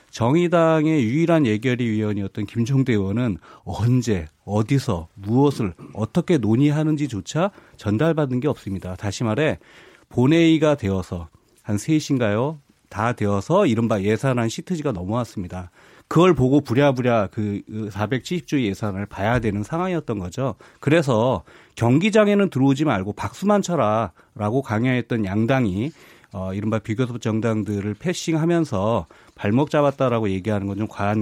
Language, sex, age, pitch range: Korean, male, 30-49, 105-145 Hz